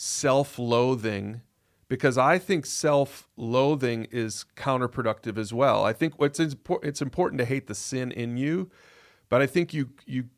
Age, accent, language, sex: 40-59, American, English, male